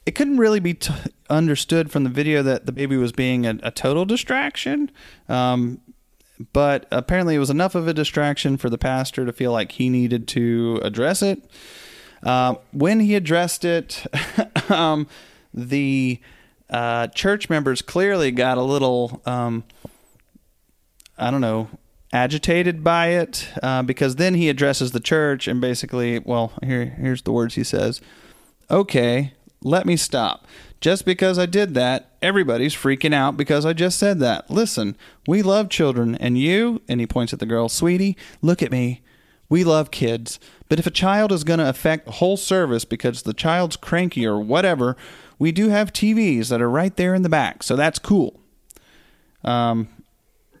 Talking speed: 170 wpm